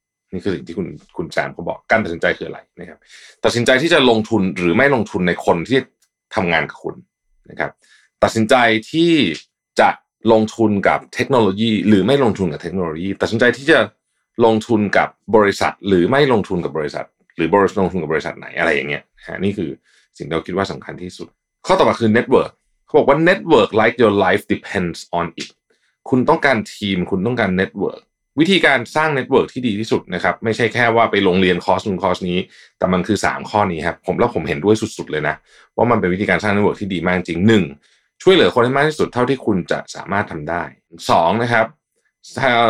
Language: Thai